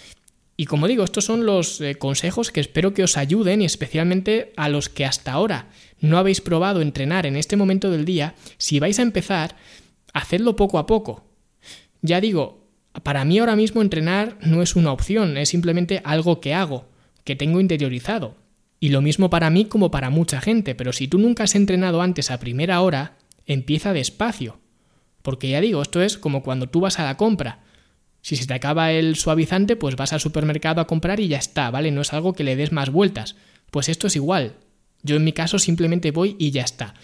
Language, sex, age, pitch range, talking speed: Spanish, male, 20-39, 145-190 Hz, 205 wpm